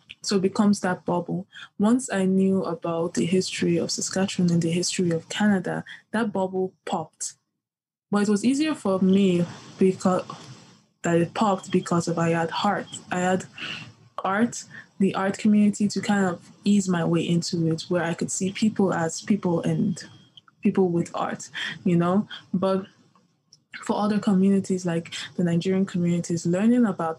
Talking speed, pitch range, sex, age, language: 160 wpm, 165-190 Hz, female, 10-29, English